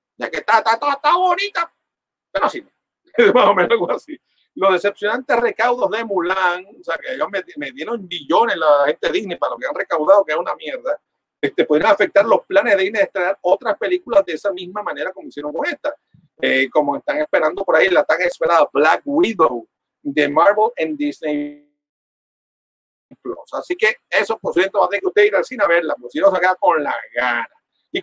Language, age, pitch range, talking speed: Spanish, 50-69, 185-300 Hz, 205 wpm